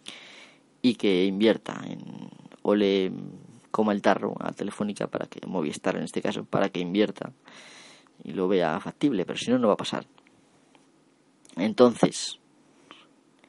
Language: Spanish